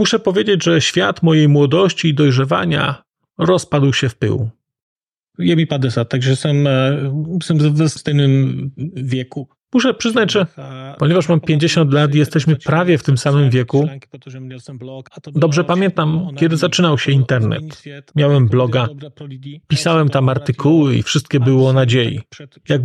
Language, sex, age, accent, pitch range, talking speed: Polish, male, 40-59, native, 135-175 Hz, 130 wpm